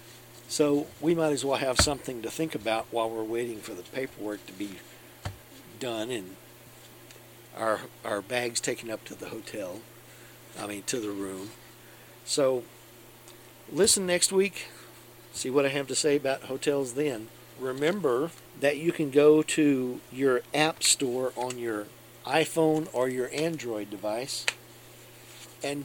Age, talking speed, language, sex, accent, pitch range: 50-69, 145 wpm, English, male, American, 115-140 Hz